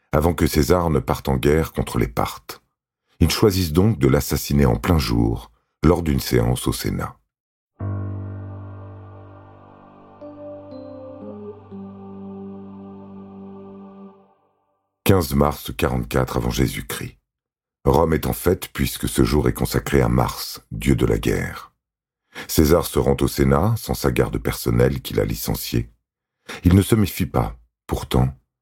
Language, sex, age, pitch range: French, male, 50-69, 70-100 Hz